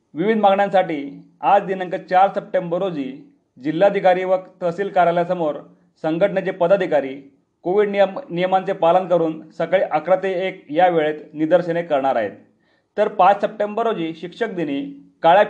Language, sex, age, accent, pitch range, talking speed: Marathi, male, 40-59, native, 165-200 Hz, 130 wpm